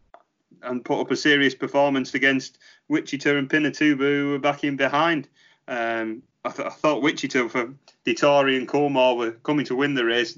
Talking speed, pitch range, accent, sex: 175 wpm, 125-155 Hz, British, male